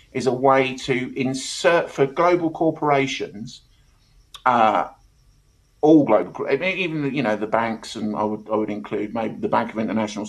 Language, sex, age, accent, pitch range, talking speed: English, male, 50-69, British, 115-140 Hz, 155 wpm